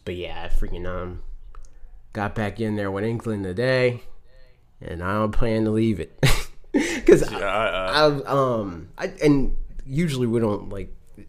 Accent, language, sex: American, English, male